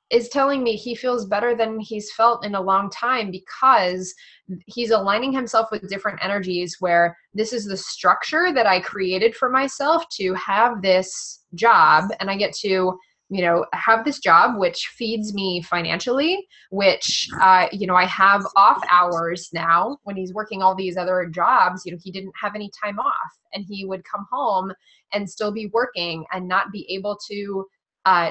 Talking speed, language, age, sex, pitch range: 180 wpm, English, 20-39, female, 180-220 Hz